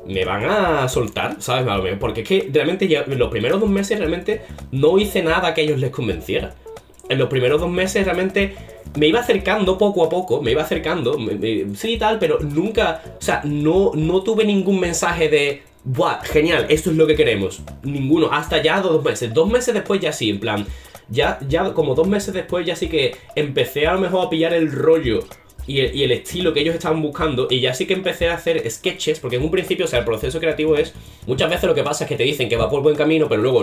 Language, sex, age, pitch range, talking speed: Spanish, male, 20-39, 130-190 Hz, 230 wpm